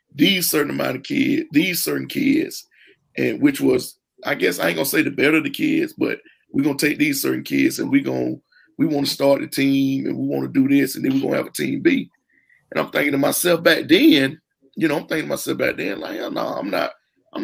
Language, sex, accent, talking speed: English, male, American, 250 wpm